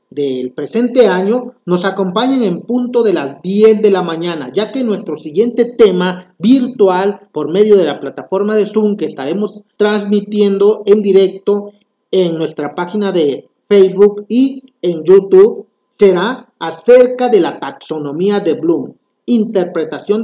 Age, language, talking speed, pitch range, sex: 40-59, Spanish, 140 wpm, 170-225 Hz, male